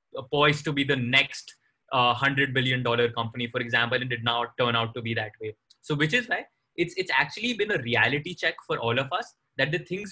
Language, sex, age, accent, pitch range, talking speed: English, male, 20-39, Indian, 130-170 Hz, 225 wpm